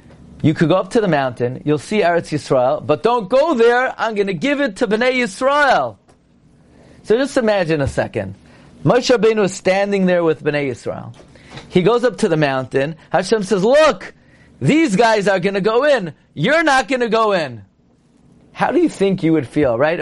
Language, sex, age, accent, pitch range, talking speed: English, male, 40-59, American, 145-205 Hz, 200 wpm